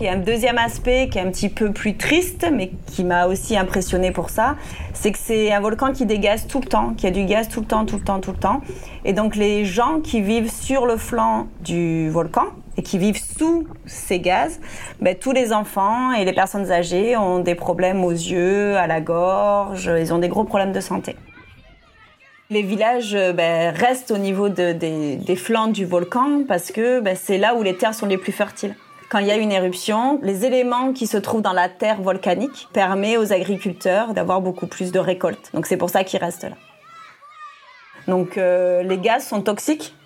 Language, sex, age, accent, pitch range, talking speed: French, female, 30-49, French, 185-230 Hz, 215 wpm